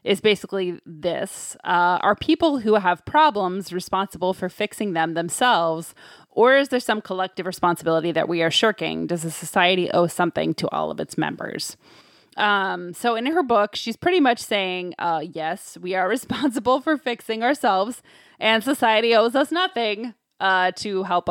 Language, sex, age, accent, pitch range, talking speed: English, female, 20-39, American, 170-215 Hz, 165 wpm